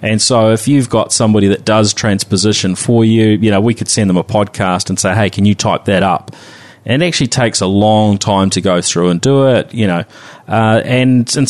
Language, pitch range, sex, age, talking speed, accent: English, 100-120 Hz, male, 30-49, 235 wpm, Australian